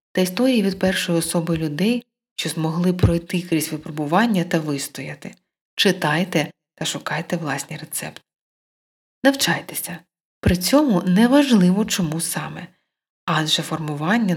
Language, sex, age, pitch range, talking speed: Ukrainian, female, 20-39, 155-205 Hz, 115 wpm